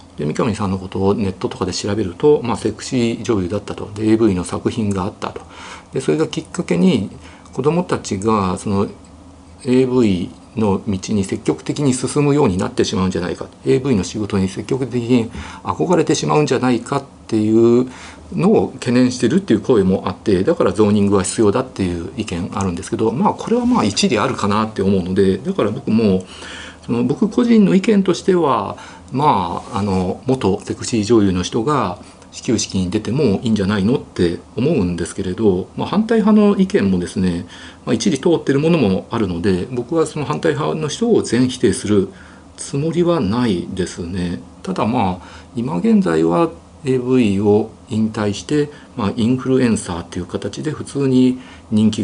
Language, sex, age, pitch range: Japanese, male, 50-69, 95-130 Hz